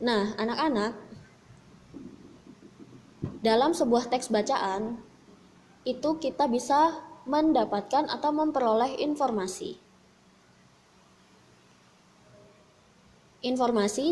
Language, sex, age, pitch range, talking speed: Indonesian, female, 20-39, 205-285 Hz, 60 wpm